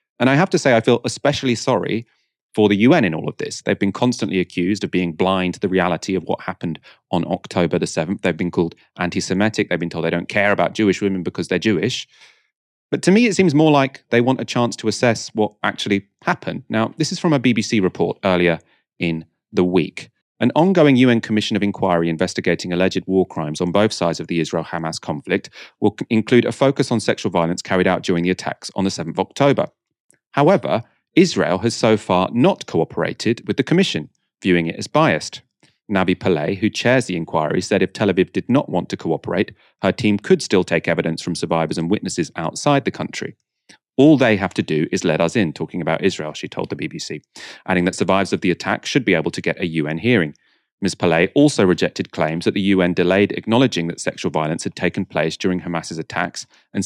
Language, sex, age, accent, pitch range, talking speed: English, male, 30-49, British, 85-120 Hz, 215 wpm